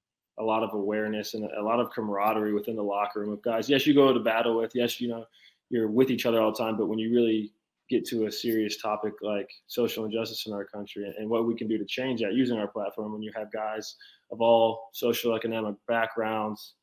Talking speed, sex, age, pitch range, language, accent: 230 wpm, male, 20-39, 110-120 Hz, English, American